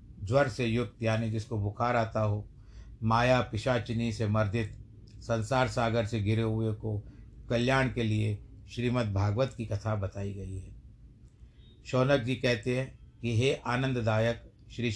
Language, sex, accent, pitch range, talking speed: Hindi, male, native, 110-125 Hz, 140 wpm